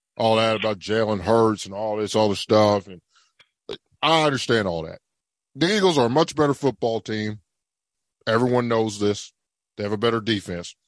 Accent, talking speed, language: American, 175 wpm, English